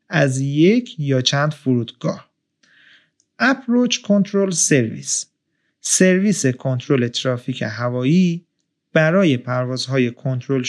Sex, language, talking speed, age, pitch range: male, Persian, 85 wpm, 30-49, 130-190 Hz